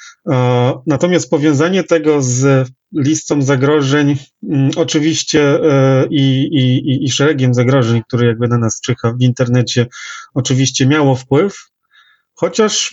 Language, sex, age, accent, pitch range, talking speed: Polish, male, 30-49, native, 115-140 Hz, 105 wpm